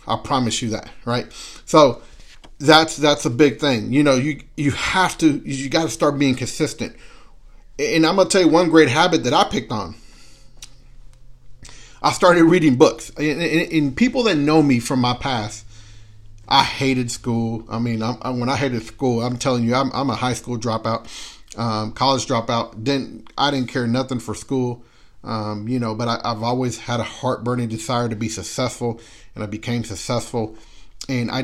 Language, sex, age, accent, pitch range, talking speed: English, male, 40-59, American, 115-145 Hz, 195 wpm